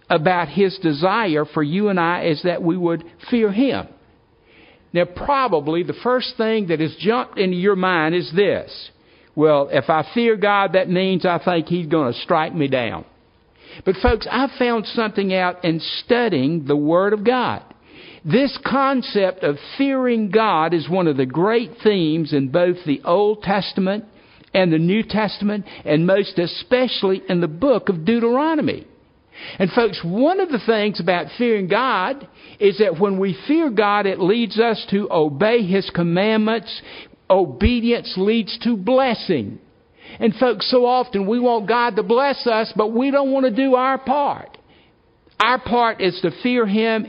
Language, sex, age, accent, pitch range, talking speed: English, male, 60-79, American, 175-235 Hz, 165 wpm